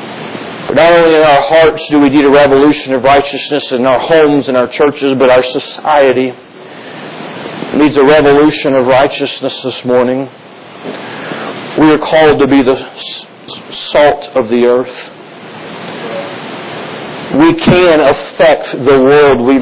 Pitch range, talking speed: 140-175 Hz, 135 wpm